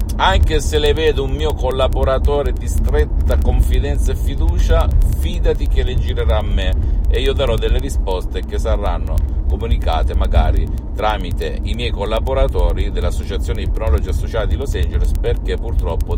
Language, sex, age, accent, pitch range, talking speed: Italian, male, 50-69, native, 75-100 Hz, 145 wpm